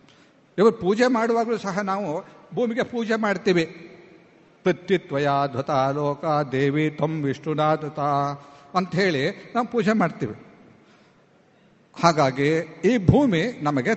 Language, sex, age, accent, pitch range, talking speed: Kannada, male, 50-69, native, 170-235 Hz, 95 wpm